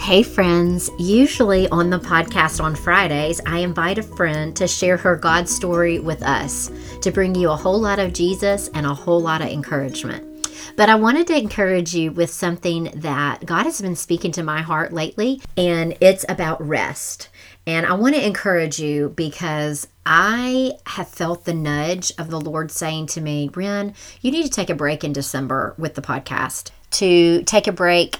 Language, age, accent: English, 40-59, American